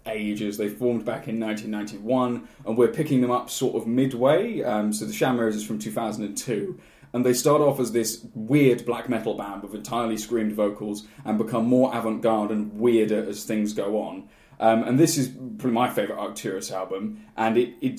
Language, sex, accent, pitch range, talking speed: English, male, British, 110-125 Hz, 190 wpm